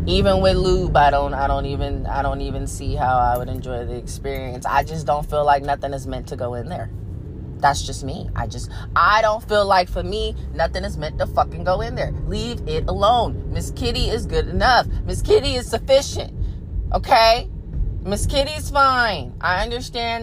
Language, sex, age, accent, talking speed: English, female, 20-39, American, 200 wpm